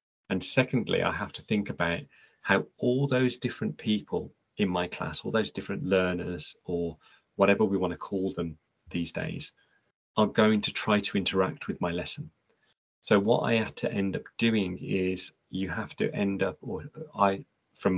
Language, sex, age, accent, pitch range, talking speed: English, male, 30-49, British, 85-95 Hz, 180 wpm